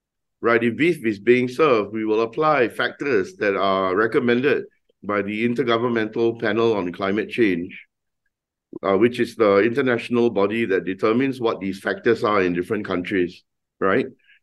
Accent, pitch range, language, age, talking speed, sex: Malaysian, 100-130 Hz, English, 50-69, 150 wpm, male